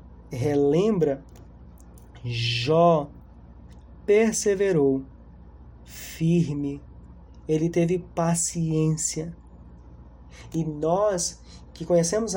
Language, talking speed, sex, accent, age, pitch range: Portuguese, 55 wpm, male, Brazilian, 20-39, 140-185 Hz